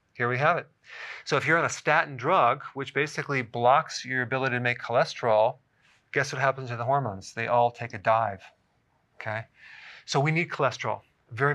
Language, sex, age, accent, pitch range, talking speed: English, male, 40-59, American, 115-140 Hz, 185 wpm